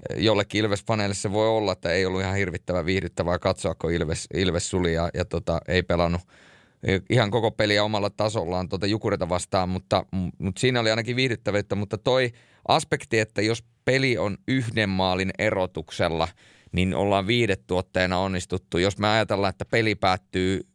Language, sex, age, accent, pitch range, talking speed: Finnish, male, 30-49, native, 90-105 Hz, 155 wpm